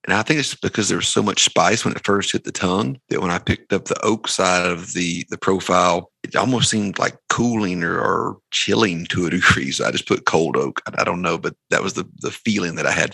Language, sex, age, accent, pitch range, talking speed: English, male, 40-59, American, 90-100 Hz, 260 wpm